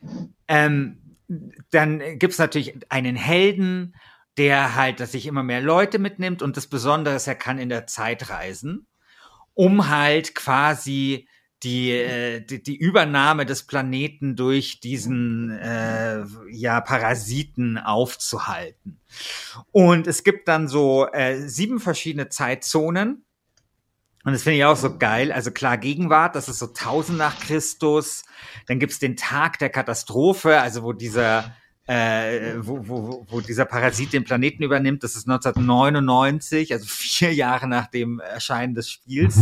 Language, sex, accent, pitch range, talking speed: German, male, German, 125-155 Hz, 145 wpm